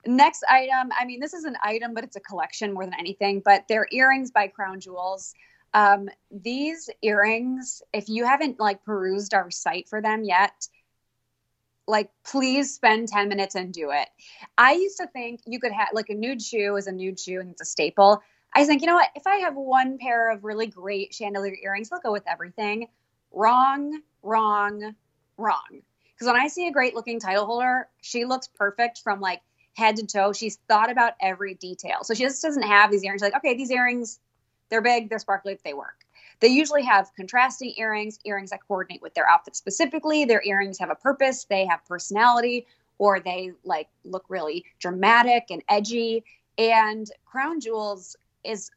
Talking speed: 190 wpm